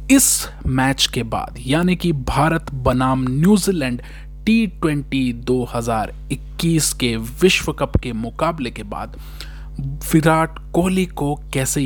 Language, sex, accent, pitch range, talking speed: Hindi, male, native, 125-165 Hz, 110 wpm